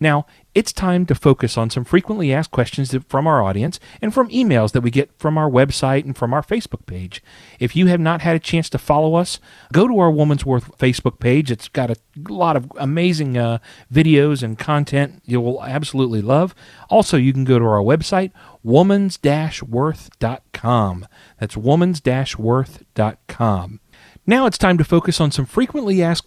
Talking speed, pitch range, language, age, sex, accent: 175 wpm, 120-160 Hz, English, 40-59, male, American